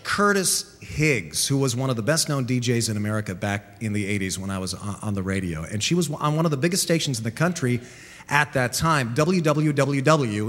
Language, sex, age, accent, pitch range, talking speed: English, male, 40-59, American, 120-185 Hz, 210 wpm